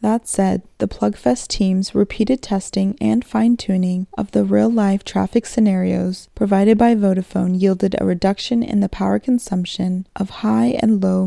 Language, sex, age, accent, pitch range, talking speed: English, female, 20-39, American, 185-225 Hz, 150 wpm